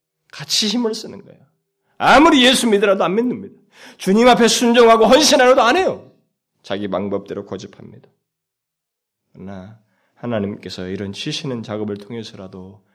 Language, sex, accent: Korean, male, native